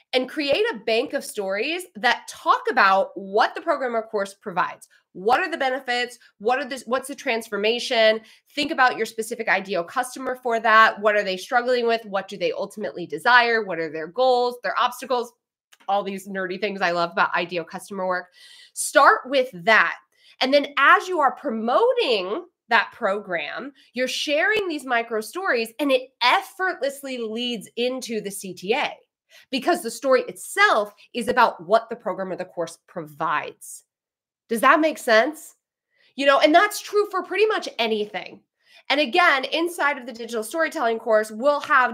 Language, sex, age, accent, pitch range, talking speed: English, female, 20-39, American, 215-290 Hz, 165 wpm